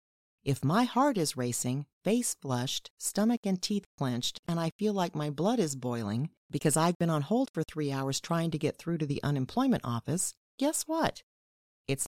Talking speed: 190 wpm